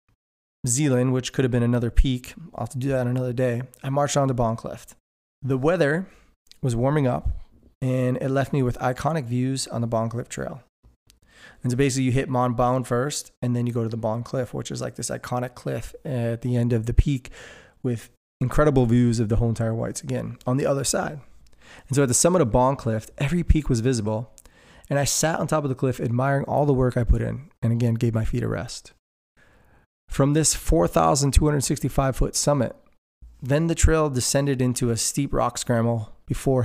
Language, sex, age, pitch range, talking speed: English, male, 20-39, 120-140 Hz, 205 wpm